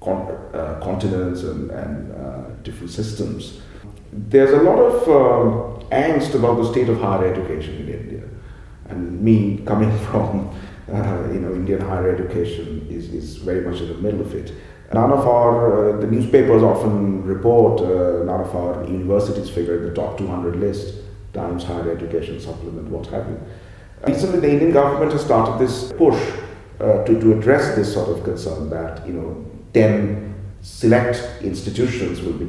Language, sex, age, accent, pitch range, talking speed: English, male, 40-59, Indian, 90-115 Hz, 170 wpm